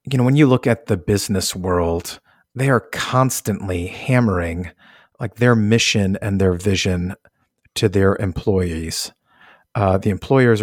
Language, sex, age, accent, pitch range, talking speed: English, male, 50-69, American, 100-115 Hz, 140 wpm